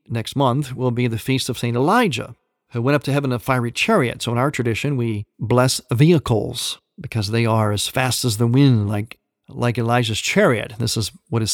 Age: 50-69